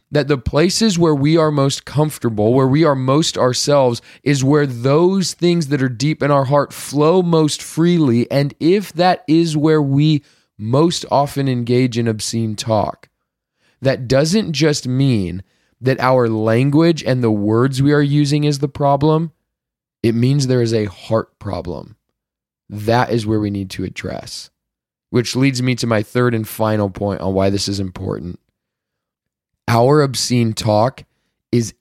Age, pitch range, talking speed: 20-39, 110-145 Hz, 160 wpm